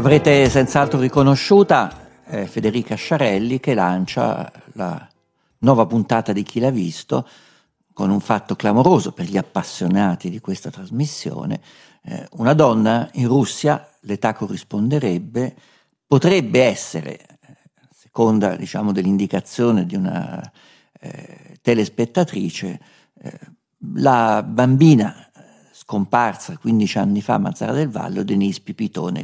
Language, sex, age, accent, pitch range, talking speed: Italian, male, 50-69, native, 100-135 Hz, 110 wpm